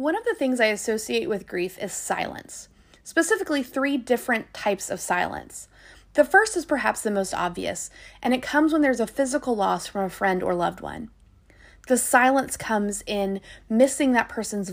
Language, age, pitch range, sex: English, 30-49, 195-265 Hz, female